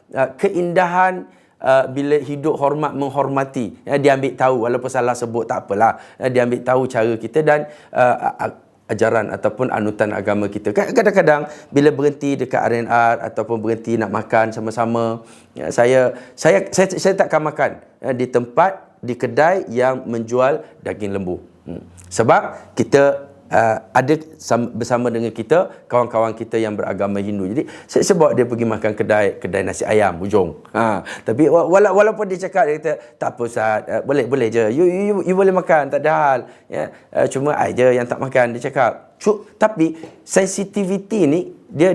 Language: Malay